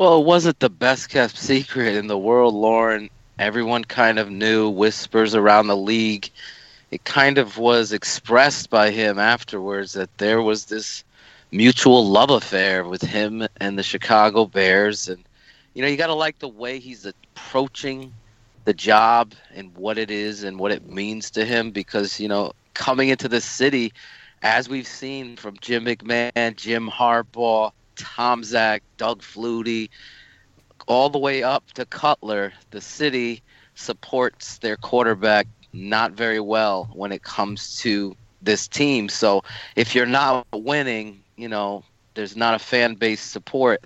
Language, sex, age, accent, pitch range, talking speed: English, male, 30-49, American, 105-125 Hz, 155 wpm